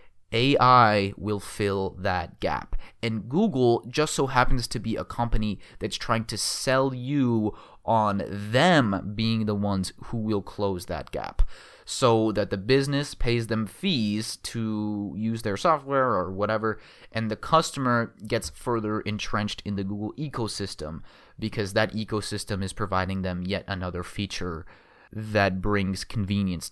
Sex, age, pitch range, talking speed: male, 20-39, 95-120 Hz, 145 wpm